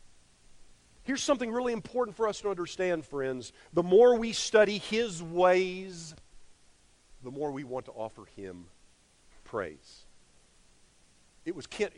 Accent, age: American, 50-69